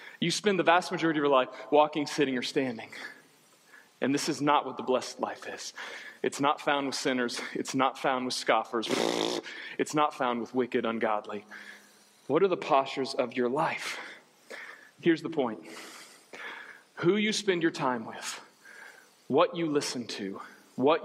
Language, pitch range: English, 135-190 Hz